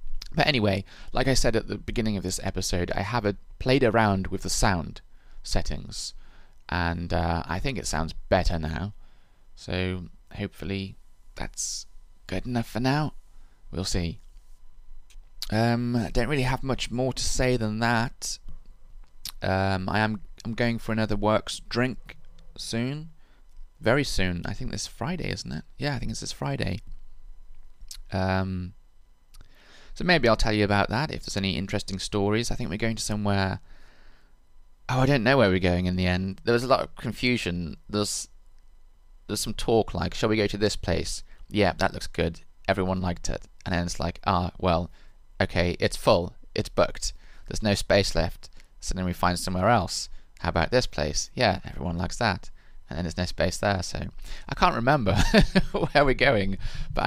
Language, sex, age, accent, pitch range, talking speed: English, male, 20-39, British, 90-115 Hz, 175 wpm